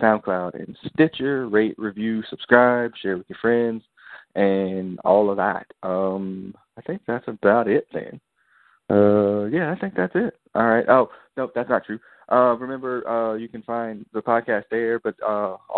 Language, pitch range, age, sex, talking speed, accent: English, 95-110 Hz, 20-39, male, 170 wpm, American